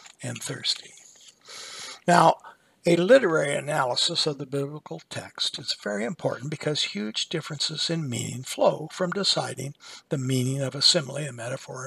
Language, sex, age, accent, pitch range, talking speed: English, male, 60-79, American, 145-190 Hz, 140 wpm